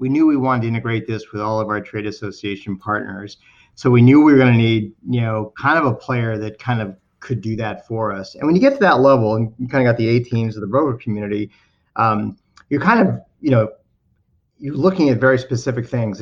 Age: 40-59